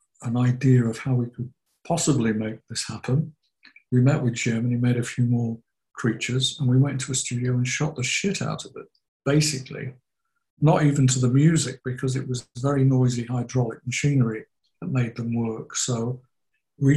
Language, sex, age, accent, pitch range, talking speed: English, male, 60-79, British, 125-150 Hz, 185 wpm